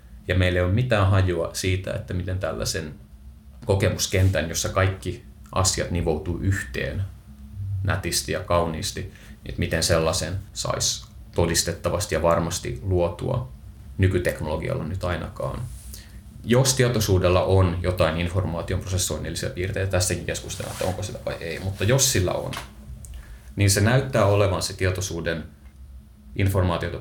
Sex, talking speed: male, 125 wpm